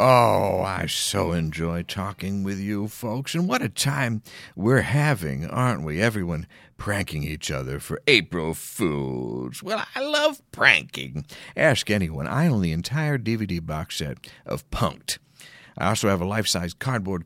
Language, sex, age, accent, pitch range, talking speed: English, male, 50-69, American, 85-140 Hz, 155 wpm